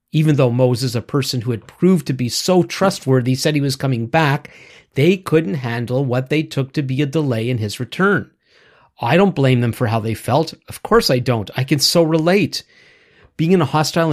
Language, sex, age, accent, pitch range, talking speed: English, male, 40-59, American, 125-170 Hz, 210 wpm